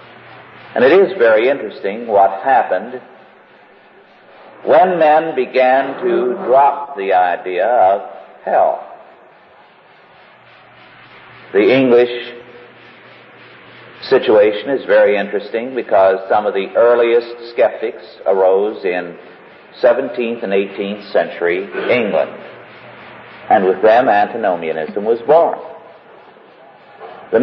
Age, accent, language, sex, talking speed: 50-69, American, English, male, 90 wpm